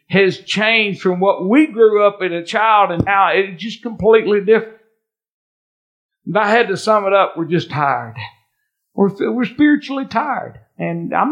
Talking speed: 165 wpm